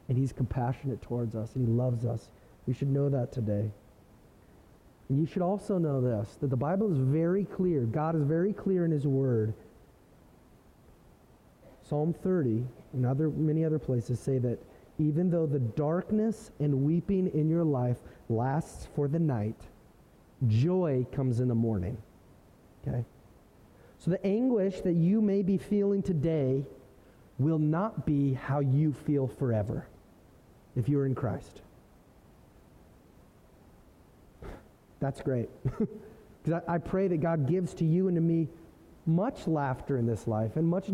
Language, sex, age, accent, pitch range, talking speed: English, male, 30-49, American, 120-170 Hz, 150 wpm